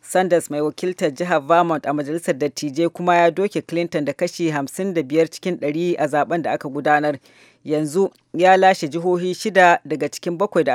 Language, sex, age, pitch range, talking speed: English, female, 40-59, 155-180 Hz, 175 wpm